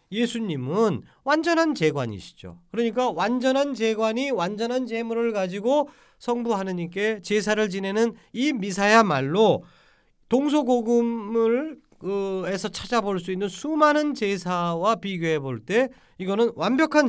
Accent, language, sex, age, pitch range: native, Korean, male, 40-59, 145-230 Hz